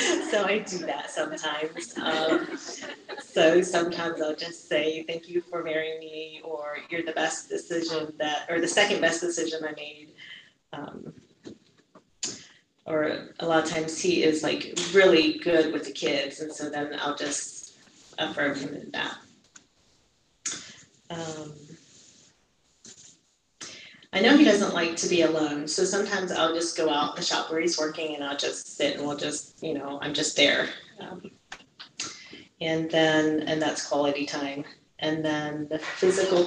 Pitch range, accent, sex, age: 150-170 Hz, American, female, 30-49